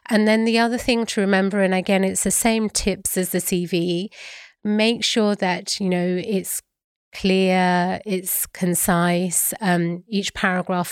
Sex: female